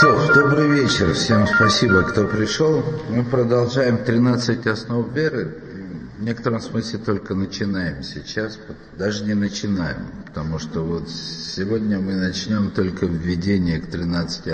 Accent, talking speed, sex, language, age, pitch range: native, 130 wpm, male, Russian, 50-69, 85-110 Hz